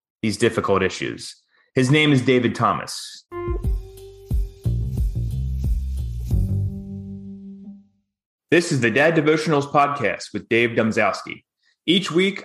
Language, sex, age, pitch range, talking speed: English, male, 30-49, 115-170 Hz, 90 wpm